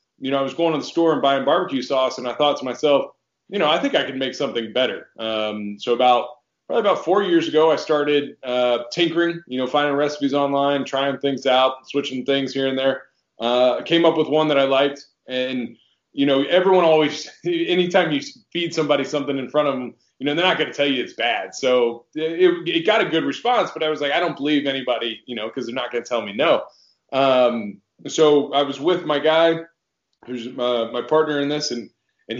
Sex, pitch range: male, 125-160 Hz